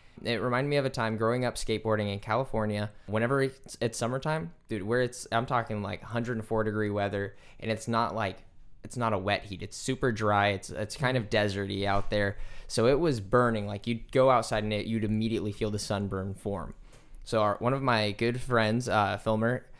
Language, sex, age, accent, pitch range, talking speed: English, male, 20-39, American, 105-120 Hz, 200 wpm